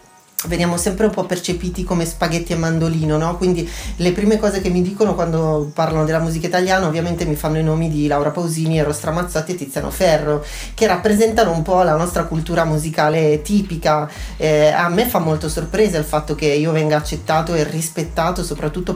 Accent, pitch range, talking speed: native, 160-190 Hz, 185 wpm